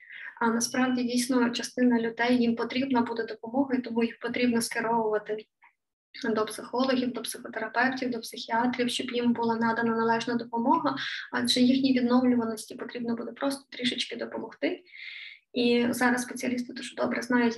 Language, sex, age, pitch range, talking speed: Ukrainian, female, 20-39, 230-260 Hz, 135 wpm